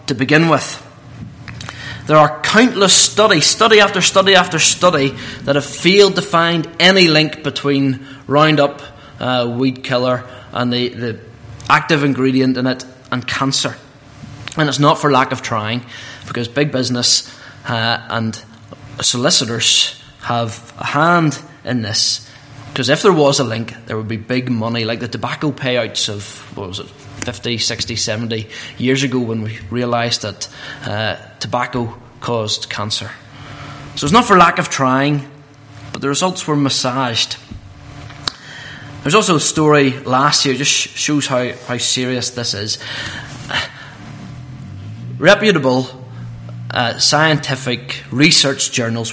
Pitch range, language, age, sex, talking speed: 120-145 Hz, English, 20-39, male, 140 wpm